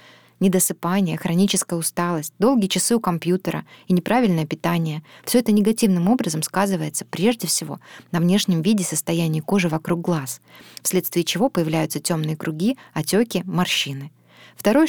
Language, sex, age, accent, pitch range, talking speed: Russian, female, 20-39, native, 160-195 Hz, 130 wpm